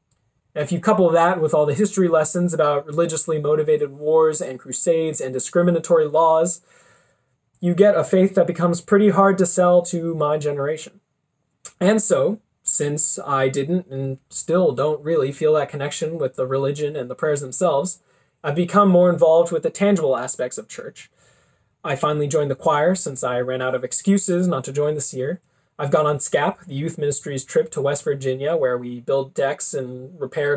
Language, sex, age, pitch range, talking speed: English, male, 20-39, 135-175 Hz, 180 wpm